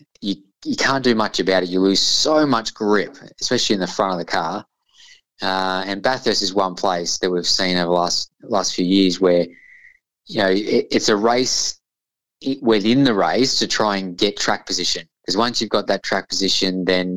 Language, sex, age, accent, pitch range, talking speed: English, male, 20-39, Australian, 90-105 Hz, 200 wpm